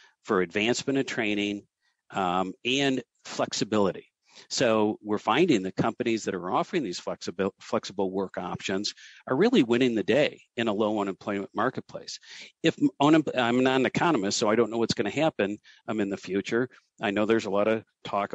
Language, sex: English, male